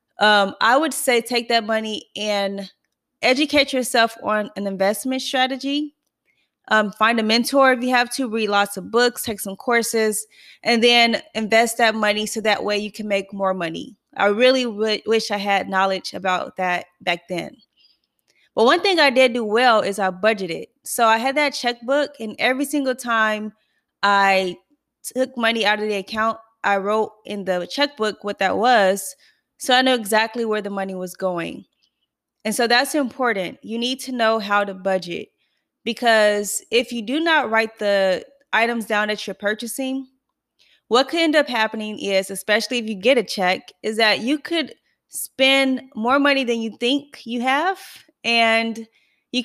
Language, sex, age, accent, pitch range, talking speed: English, female, 20-39, American, 205-255 Hz, 175 wpm